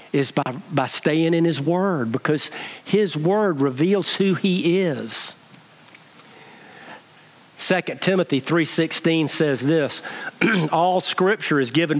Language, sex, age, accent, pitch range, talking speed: English, male, 50-69, American, 145-185 Hz, 115 wpm